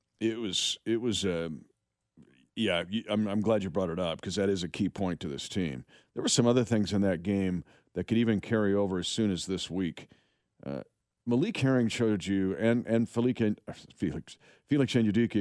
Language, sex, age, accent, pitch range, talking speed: English, male, 50-69, American, 90-110 Hz, 195 wpm